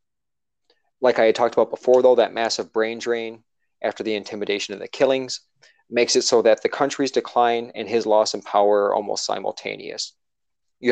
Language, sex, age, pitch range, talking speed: English, male, 20-39, 110-130 Hz, 180 wpm